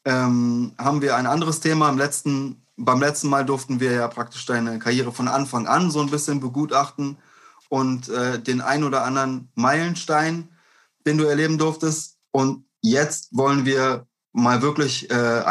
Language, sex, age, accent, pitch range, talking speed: German, male, 20-39, German, 125-155 Hz, 165 wpm